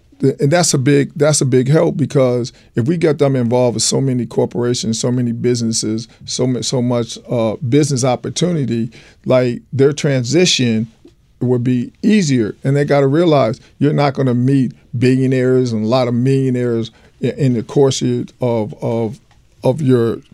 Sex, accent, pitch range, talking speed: male, American, 115-140 Hz, 170 wpm